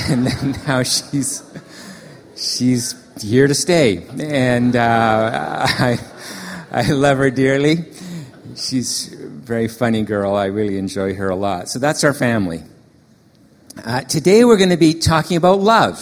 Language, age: English, 50-69